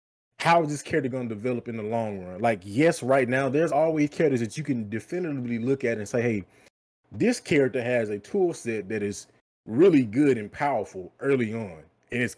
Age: 20-39